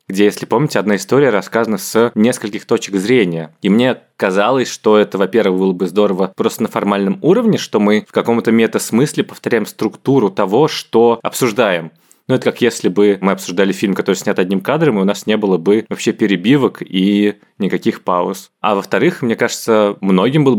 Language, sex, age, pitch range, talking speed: Russian, male, 20-39, 95-115 Hz, 180 wpm